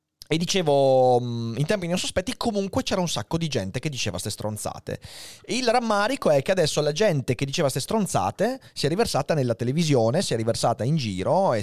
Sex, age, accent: male, 30-49, native